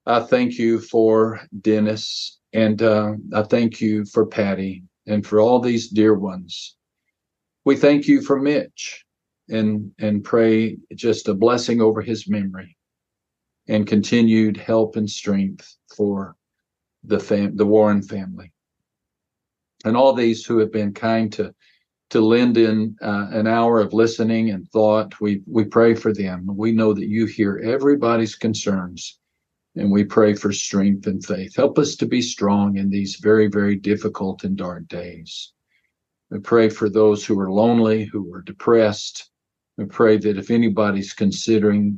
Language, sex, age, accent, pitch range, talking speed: English, male, 50-69, American, 100-115 Hz, 155 wpm